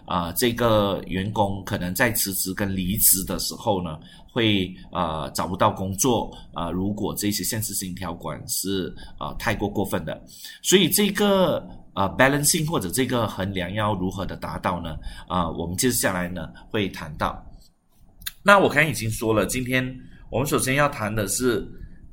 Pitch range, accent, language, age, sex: 90-120 Hz, native, Chinese, 30-49, male